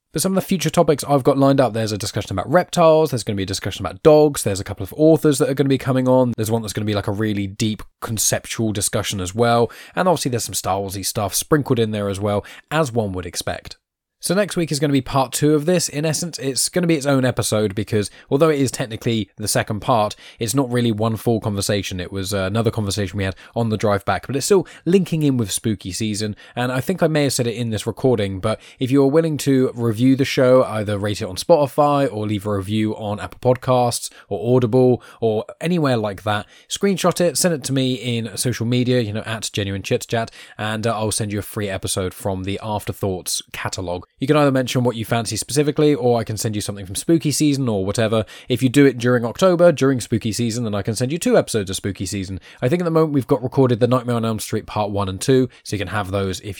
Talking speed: 255 wpm